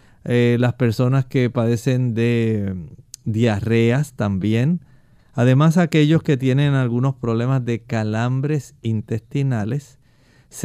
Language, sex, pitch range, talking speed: Spanish, male, 115-140 Hz, 100 wpm